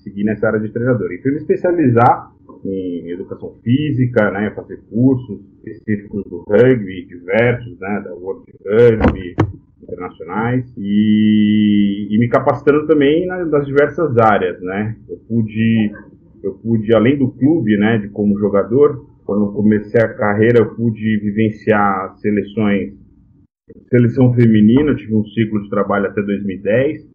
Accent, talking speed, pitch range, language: Brazilian, 135 wpm, 100-120 Hz, Portuguese